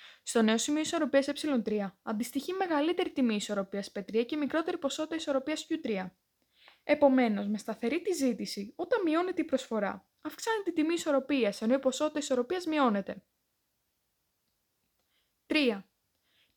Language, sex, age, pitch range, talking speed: Greek, female, 20-39, 220-310 Hz, 120 wpm